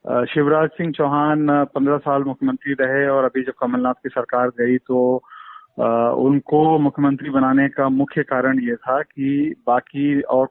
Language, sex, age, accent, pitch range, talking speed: Hindi, male, 40-59, native, 130-145 Hz, 150 wpm